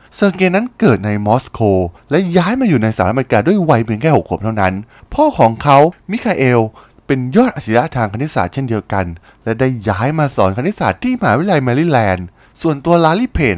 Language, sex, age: Thai, male, 20-39